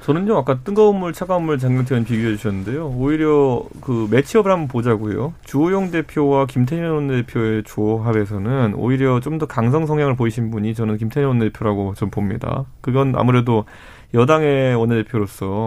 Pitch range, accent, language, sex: 110-145 Hz, native, Korean, male